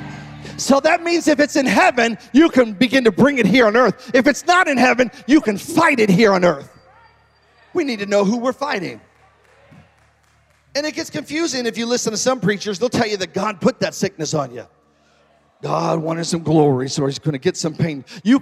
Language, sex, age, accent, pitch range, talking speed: English, male, 40-59, American, 190-255 Hz, 220 wpm